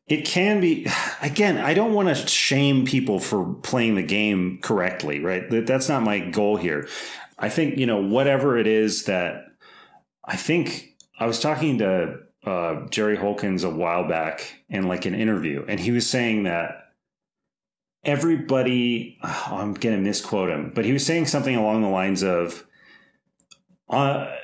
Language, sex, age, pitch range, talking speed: English, male, 30-49, 95-130 Hz, 160 wpm